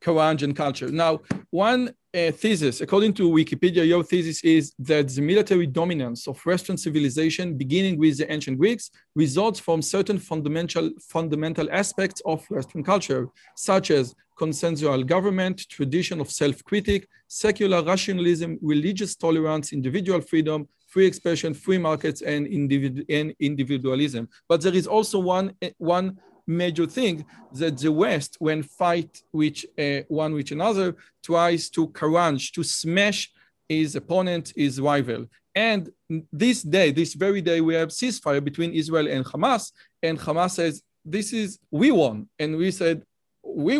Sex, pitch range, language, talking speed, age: male, 150-185 Hz, Hebrew, 145 wpm, 40-59